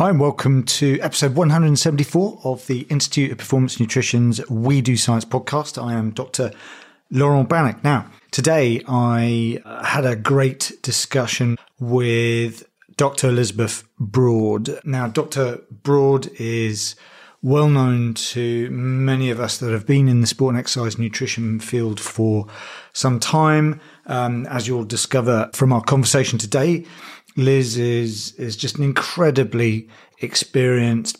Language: English